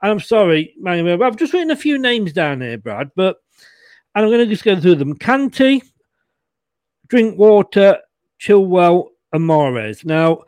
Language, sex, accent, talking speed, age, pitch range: English, male, British, 150 wpm, 40-59, 155-200 Hz